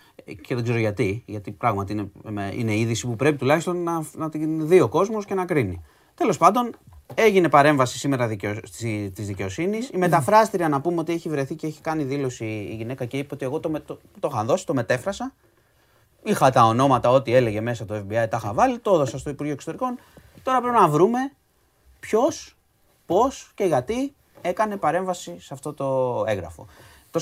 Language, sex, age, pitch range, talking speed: Greek, male, 30-49, 115-175 Hz, 185 wpm